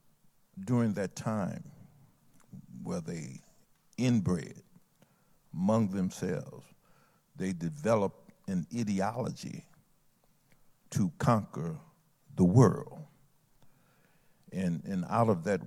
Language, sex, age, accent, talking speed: English, male, 60-79, American, 80 wpm